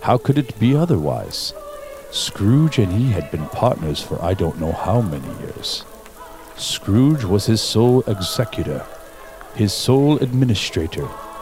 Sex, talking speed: male, 135 wpm